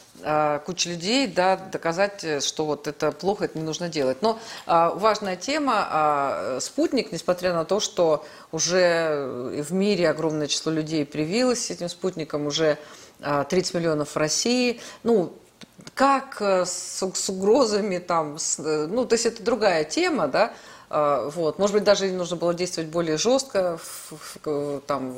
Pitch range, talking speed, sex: 155-195 Hz, 135 wpm, female